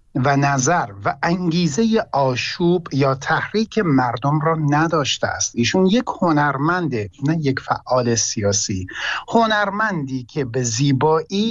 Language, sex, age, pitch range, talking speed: Persian, male, 50-69, 125-175 Hz, 115 wpm